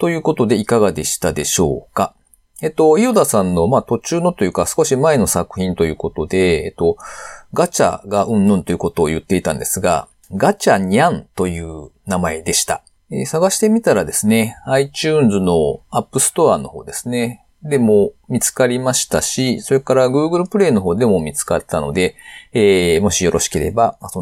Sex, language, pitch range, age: male, Japanese, 90-140 Hz, 40-59